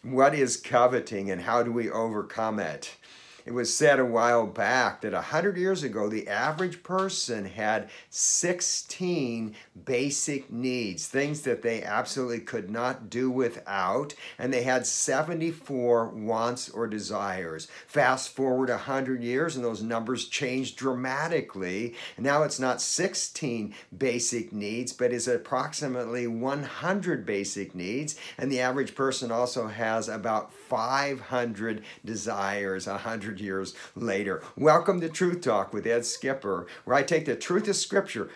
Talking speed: 140 wpm